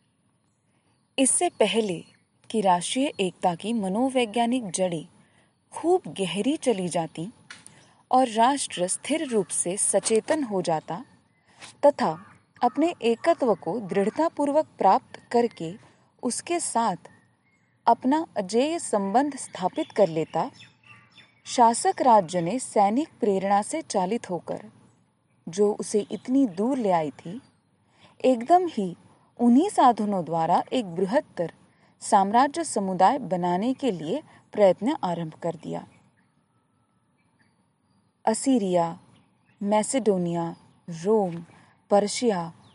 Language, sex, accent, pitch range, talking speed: Hindi, female, native, 185-260 Hz, 100 wpm